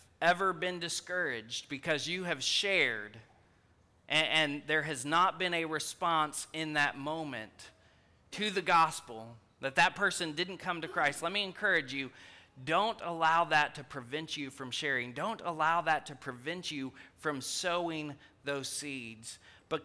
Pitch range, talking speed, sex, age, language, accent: 115-165 Hz, 155 wpm, male, 30-49, English, American